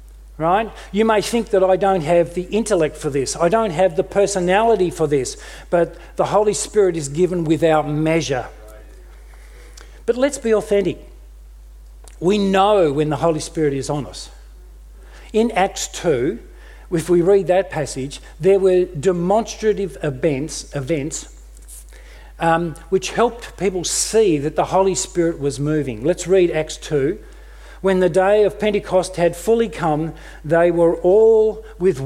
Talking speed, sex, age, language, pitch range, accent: 150 wpm, male, 50-69, English, 150-195 Hz, Australian